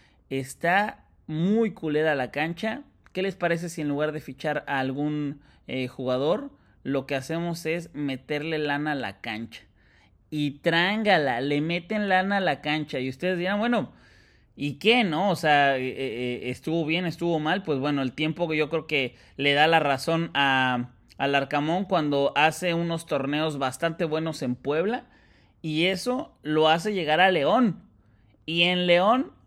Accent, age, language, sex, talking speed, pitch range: Mexican, 30-49, Spanish, male, 165 wpm, 135-175 Hz